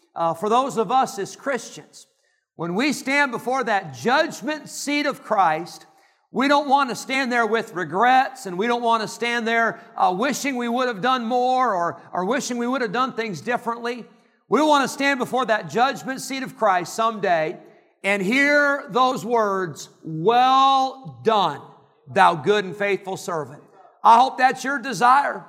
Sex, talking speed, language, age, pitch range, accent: male, 175 wpm, English, 50-69, 205-260 Hz, American